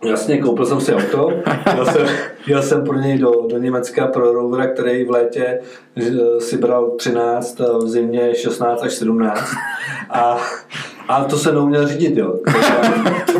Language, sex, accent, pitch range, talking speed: Czech, male, native, 135-175 Hz, 150 wpm